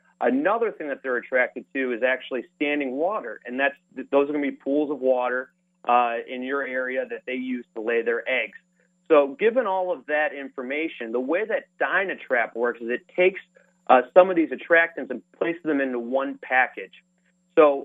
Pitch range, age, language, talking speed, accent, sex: 130-175 Hz, 30-49, English, 190 wpm, American, male